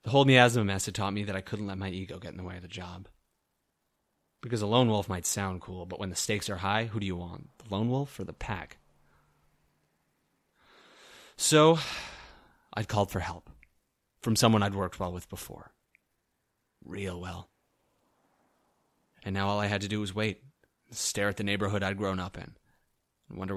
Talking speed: 195 wpm